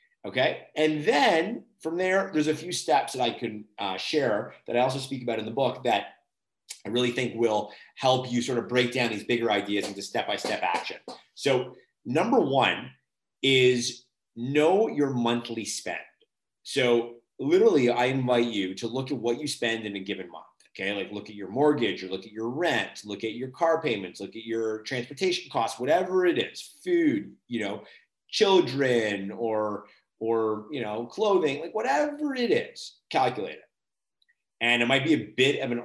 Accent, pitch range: American, 110-140 Hz